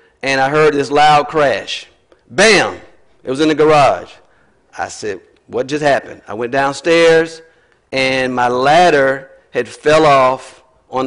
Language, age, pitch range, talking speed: English, 40-59, 140-180 Hz, 145 wpm